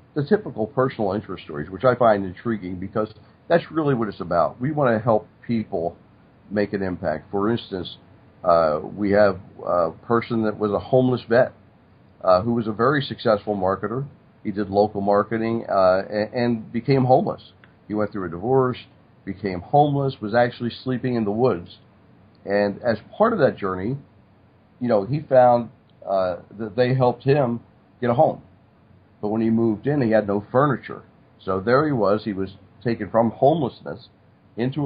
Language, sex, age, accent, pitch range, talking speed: English, male, 50-69, American, 100-125 Hz, 175 wpm